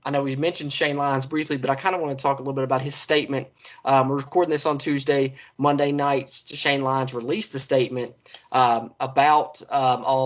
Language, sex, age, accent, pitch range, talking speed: English, male, 20-39, American, 125-140 Hz, 215 wpm